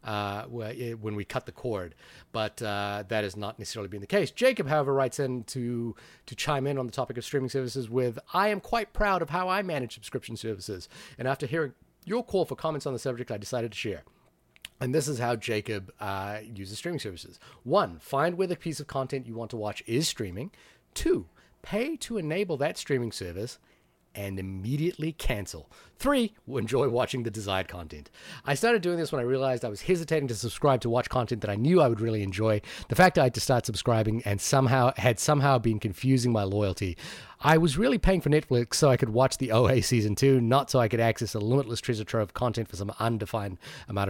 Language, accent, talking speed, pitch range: English, American, 215 wpm, 105-140 Hz